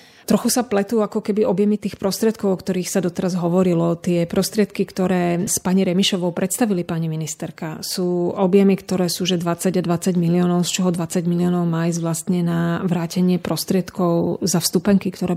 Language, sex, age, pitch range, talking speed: Slovak, female, 30-49, 175-195 Hz, 170 wpm